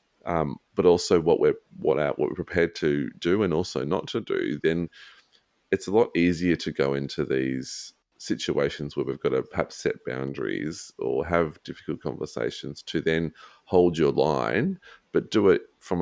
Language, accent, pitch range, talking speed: English, Australian, 70-85 Hz, 170 wpm